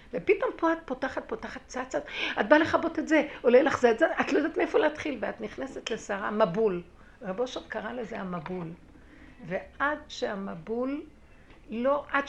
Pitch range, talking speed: 195-270 Hz, 160 wpm